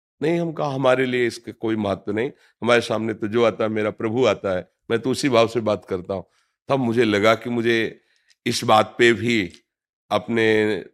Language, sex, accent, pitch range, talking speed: Hindi, male, native, 110-155 Hz, 210 wpm